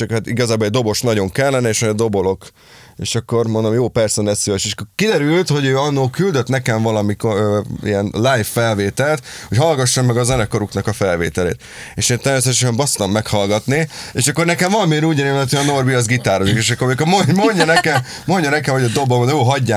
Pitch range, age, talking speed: 105-135 Hz, 30-49, 190 wpm